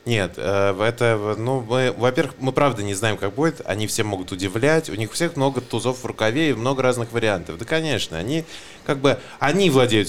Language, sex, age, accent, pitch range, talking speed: Russian, male, 20-39, native, 105-145 Hz, 200 wpm